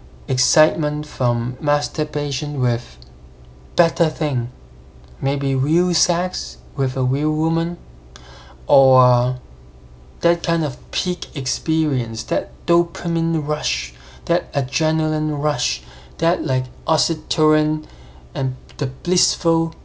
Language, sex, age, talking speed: English, male, 20-39, 95 wpm